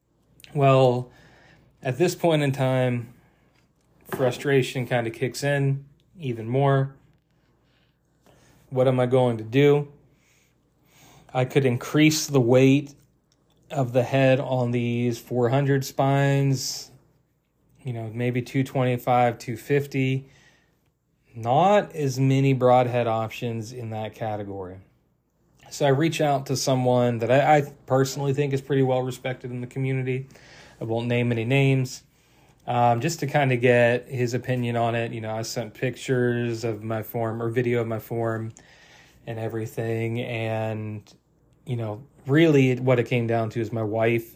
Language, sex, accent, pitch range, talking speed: English, male, American, 115-140 Hz, 140 wpm